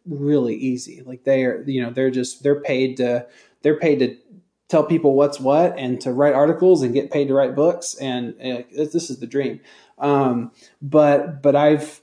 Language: English